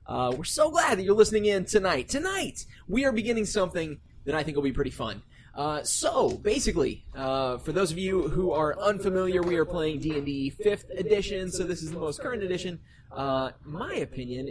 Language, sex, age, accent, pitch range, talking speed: English, male, 20-39, American, 135-195 Hz, 200 wpm